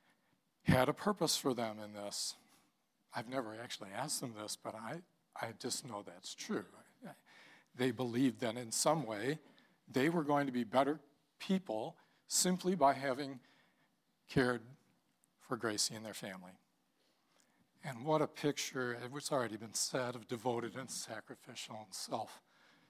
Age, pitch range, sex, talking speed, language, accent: 60-79, 120-160 Hz, male, 145 wpm, English, American